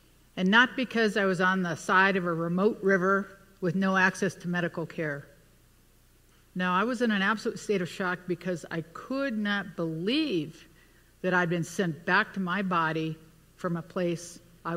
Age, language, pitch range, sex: 60-79, English, 170-205 Hz, female